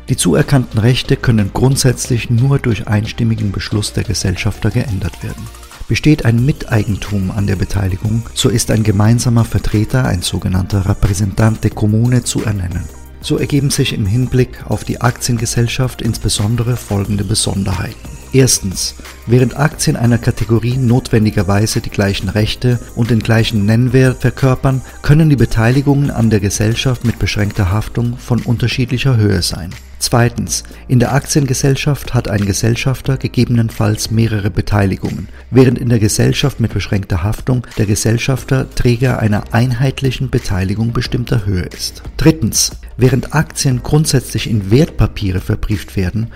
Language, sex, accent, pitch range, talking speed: German, male, German, 105-125 Hz, 135 wpm